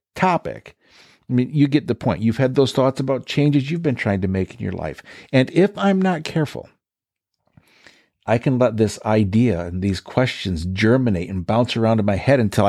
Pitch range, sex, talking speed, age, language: 105-145 Hz, male, 200 wpm, 50-69, English